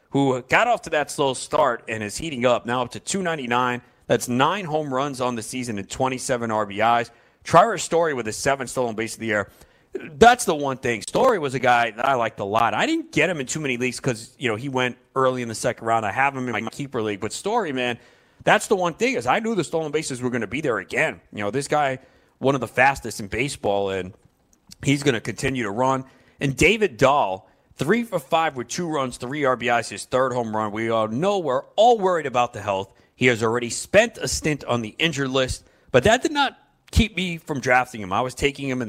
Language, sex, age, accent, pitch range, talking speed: English, male, 30-49, American, 110-140 Hz, 240 wpm